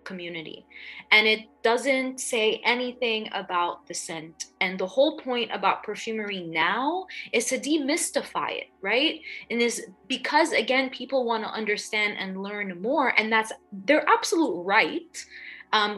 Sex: female